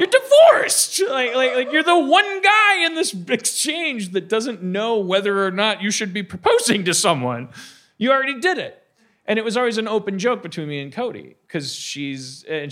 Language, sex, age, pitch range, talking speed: English, male, 40-59, 140-215 Hz, 200 wpm